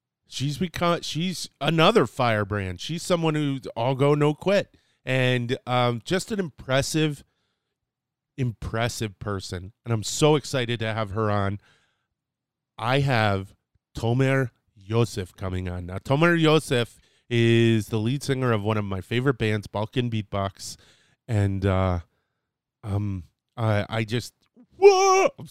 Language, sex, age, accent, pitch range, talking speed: English, male, 30-49, American, 105-145 Hz, 130 wpm